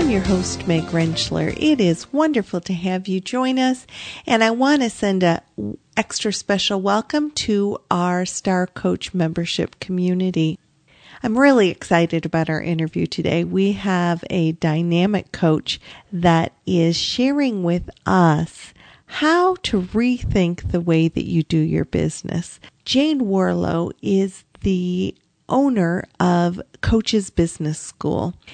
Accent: American